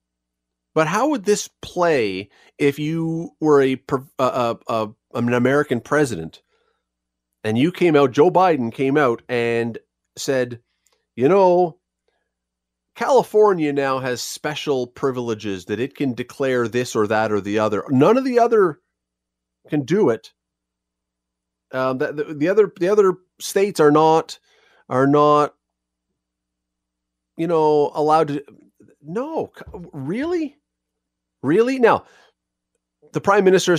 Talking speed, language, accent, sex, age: 130 wpm, English, American, male, 40-59